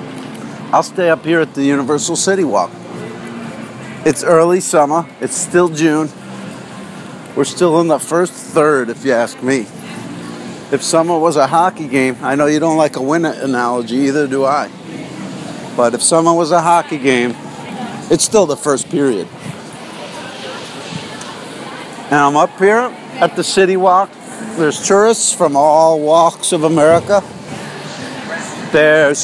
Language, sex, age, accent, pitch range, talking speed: English, male, 50-69, American, 155-195 Hz, 145 wpm